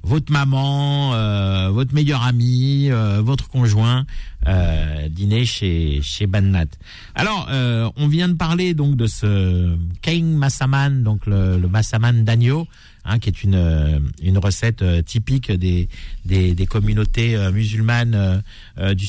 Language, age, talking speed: French, 50-69, 135 wpm